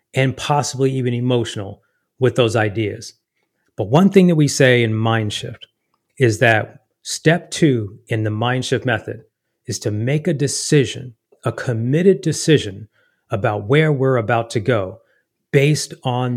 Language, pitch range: English, 115-150 Hz